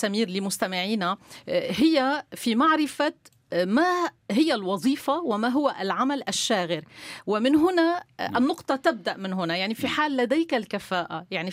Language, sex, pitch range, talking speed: Arabic, female, 200-280 Hz, 125 wpm